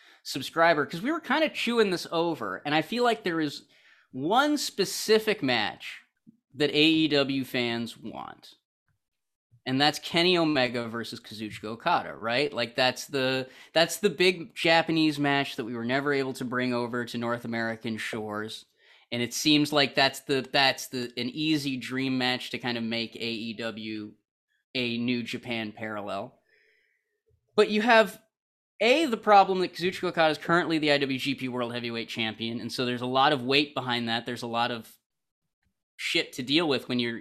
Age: 30-49